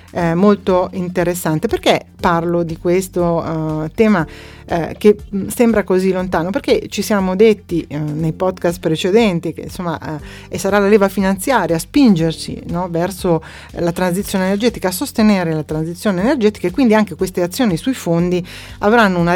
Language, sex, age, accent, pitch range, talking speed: Italian, female, 30-49, native, 165-210 Hz, 150 wpm